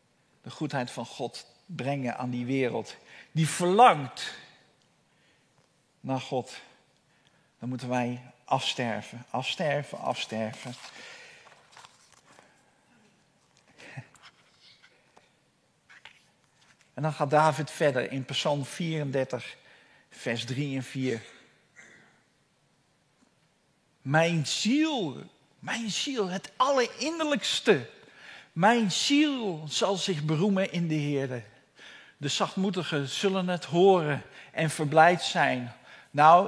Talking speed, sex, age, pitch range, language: 85 wpm, male, 50-69, 140-210 Hz, Dutch